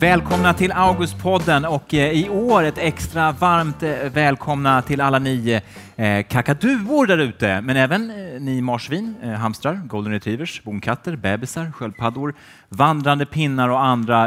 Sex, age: male, 30-49